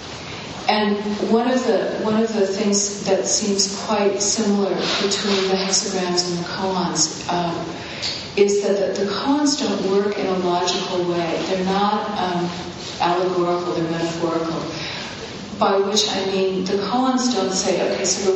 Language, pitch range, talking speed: English, 175-200 Hz, 155 wpm